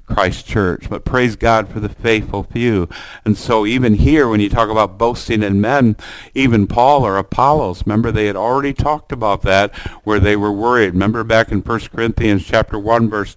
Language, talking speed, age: English, 195 wpm, 60-79